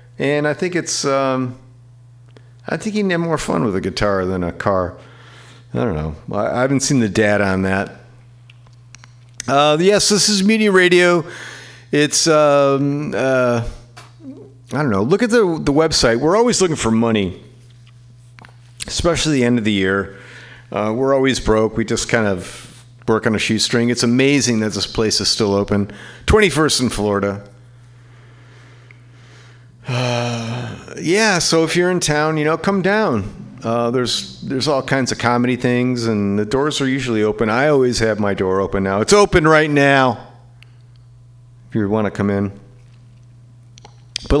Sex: male